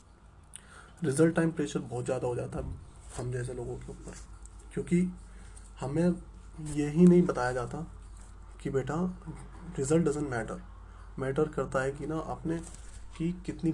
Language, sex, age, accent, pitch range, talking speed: Hindi, male, 20-39, native, 95-145 Hz, 145 wpm